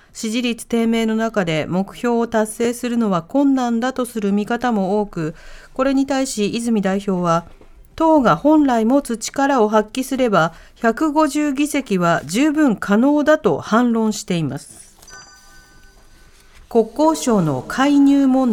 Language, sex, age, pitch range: Japanese, female, 40-59, 190-285 Hz